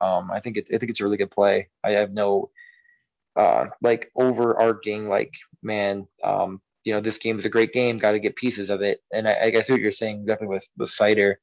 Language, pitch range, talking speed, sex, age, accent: English, 100-120 Hz, 235 wpm, male, 20-39, American